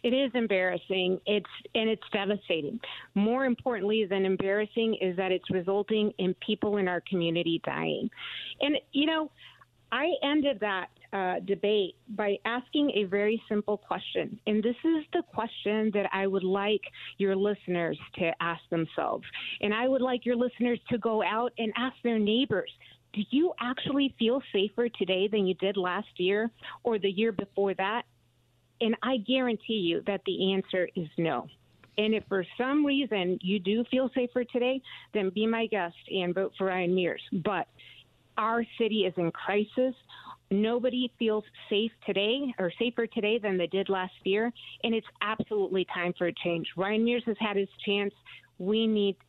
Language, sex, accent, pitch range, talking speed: English, female, American, 190-235 Hz, 170 wpm